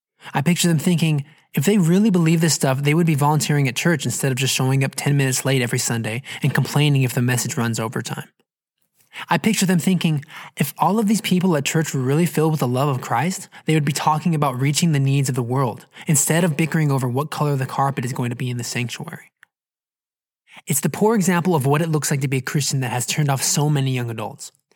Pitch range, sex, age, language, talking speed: 130-165 Hz, male, 20-39, English, 240 wpm